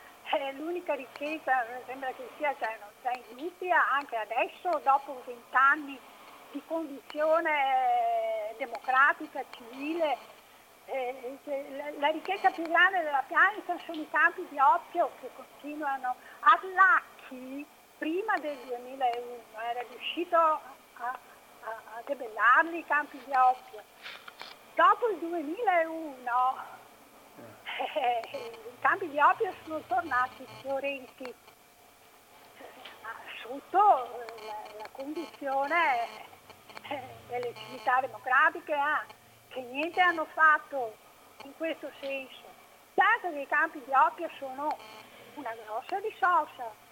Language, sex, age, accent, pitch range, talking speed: Italian, female, 50-69, native, 255-350 Hz, 100 wpm